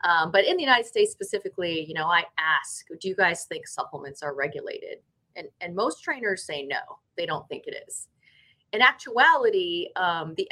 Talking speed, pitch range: 190 wpm, 170-280 Hz